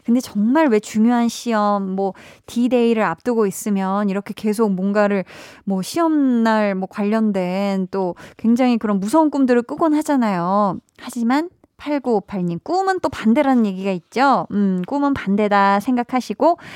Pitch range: 195-255 Hz